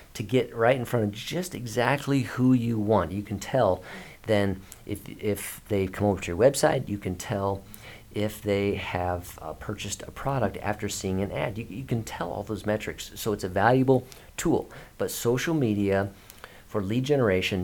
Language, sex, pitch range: English, male, 95-115 Hz